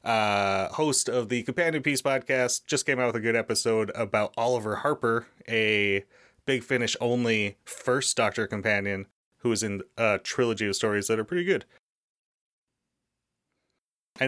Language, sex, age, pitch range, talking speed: English, male, 30-49, 105-130 Hz, 145 wpm